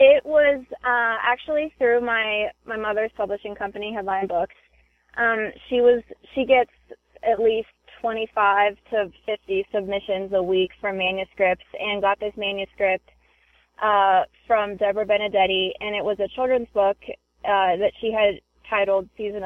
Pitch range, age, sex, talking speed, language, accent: 190-225 Hz, 20-39, female, 145 wpm, English, American